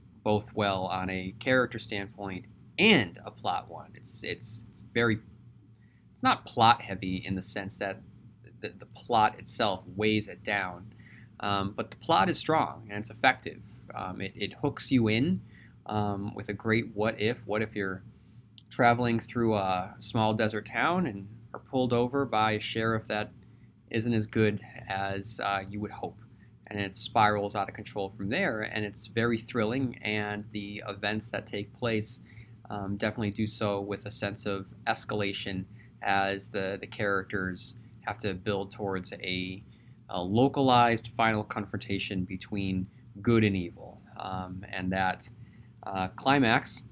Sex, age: male, 30-49